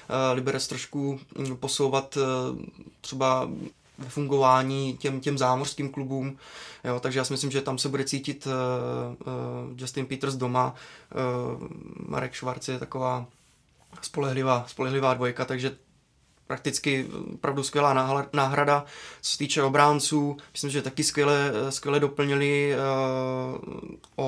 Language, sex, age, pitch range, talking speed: Czech, male, 20-39, 125-135 Hz, 115 wpm